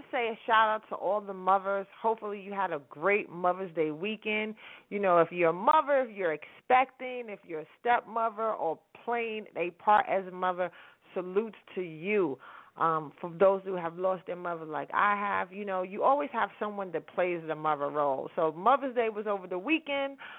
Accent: American